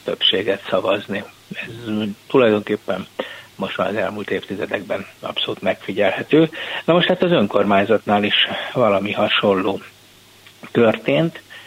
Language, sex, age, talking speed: Hungarian, male, 60-79, 105 wpm